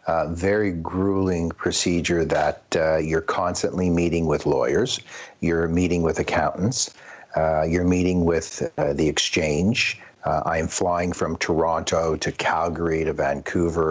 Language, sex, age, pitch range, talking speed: English, male, 50-69, 80-95 Hz, 135 wpm